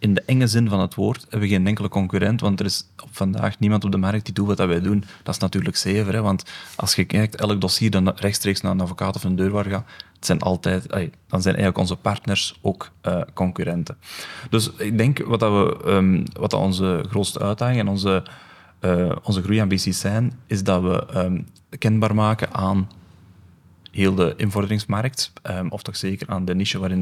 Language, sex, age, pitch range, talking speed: Dutch, male, 30-49, 95-105 Hz, 205 wpm